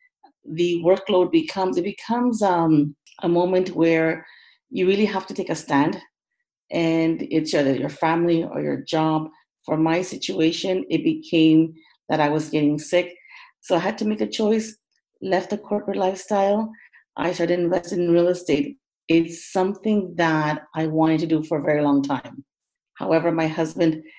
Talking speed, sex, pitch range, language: 165 wpm, female, 160-205 Hz, English